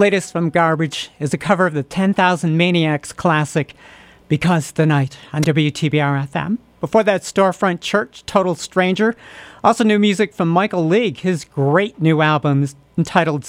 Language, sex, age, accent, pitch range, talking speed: English, male, 50-69, American, 150-185 Hz, 150 wpm